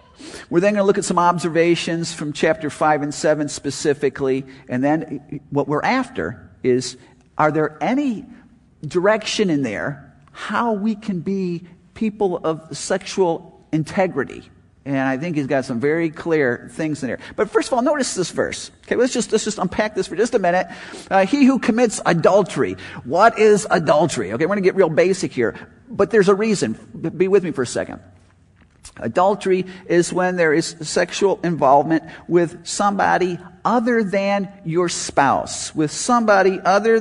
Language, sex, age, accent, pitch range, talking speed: English, male, 50-69, American, 160-205 Hz, 170 wpm